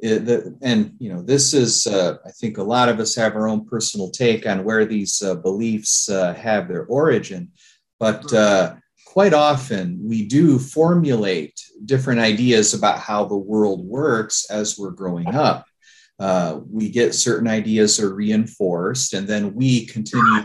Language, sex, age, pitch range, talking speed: English, male, 30-49, 105-125 Hz, 165 wpm